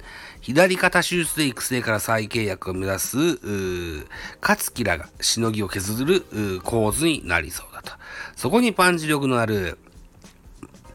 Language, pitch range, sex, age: Japanese, 90-130 Hz, male, 40-59